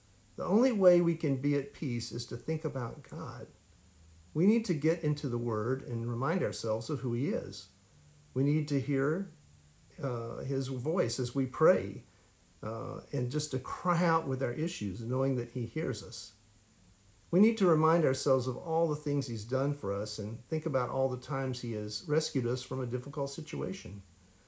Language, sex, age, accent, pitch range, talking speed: English, male, 50-69, American, 110-150 Hz, 190 wpm